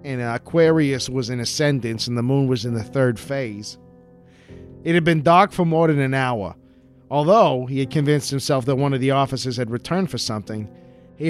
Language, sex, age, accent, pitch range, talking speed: English, male, 40-59, American, 125-160 Hz, 195 wpm